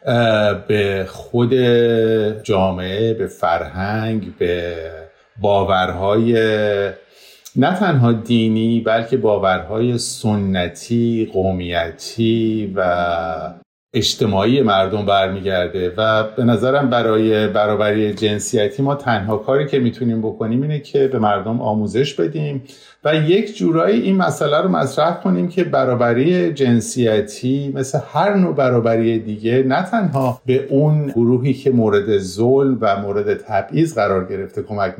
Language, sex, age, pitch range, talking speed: Persian, male, 50-69, 110-145 Hz, 115 wpm